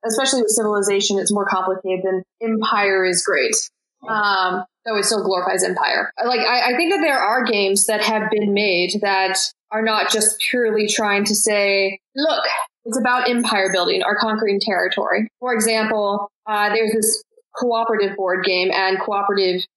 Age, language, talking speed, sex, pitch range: 20-39, English, 165 wpm, female, 190-220 Hz